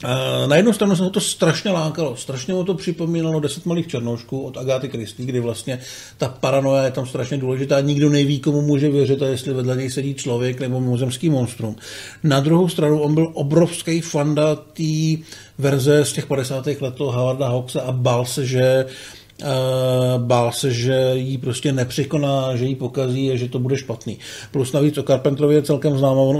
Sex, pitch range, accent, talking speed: male, 130-150 Hz, native, 180 wpm